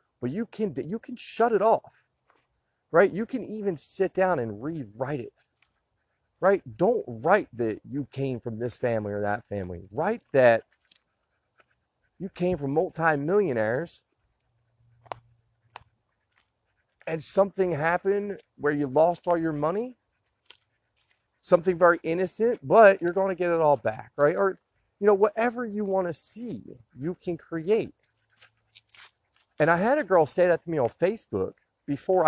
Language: English